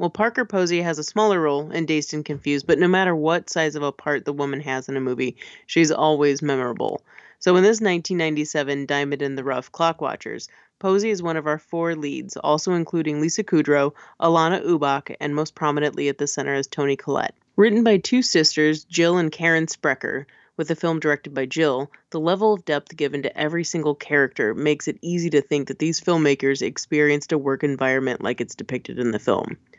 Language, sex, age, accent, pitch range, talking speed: English, female, 30-49, American, 145-175 Hz, 200 wpm